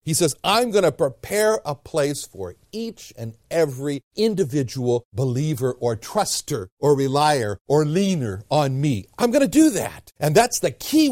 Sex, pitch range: male, 125-200 Hz